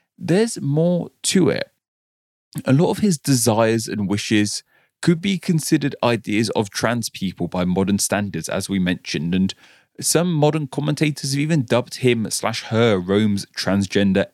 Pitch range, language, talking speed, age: 110-160 Hz, English, 150 wpm, 30-49